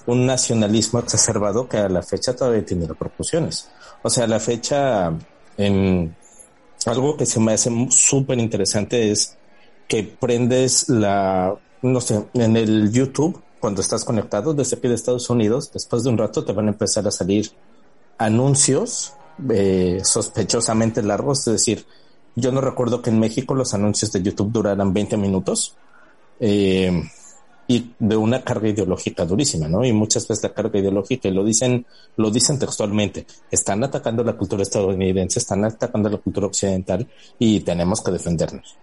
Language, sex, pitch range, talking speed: Spanish, male, 100-120 Hz, 160 wpm